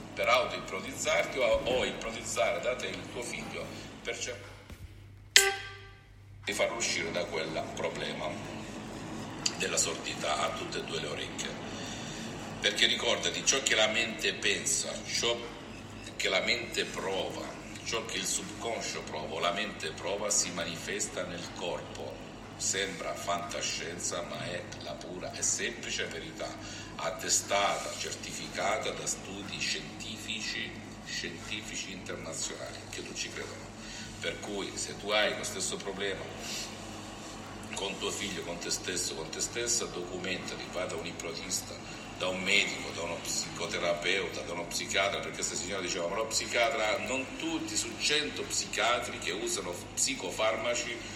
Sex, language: male, Italian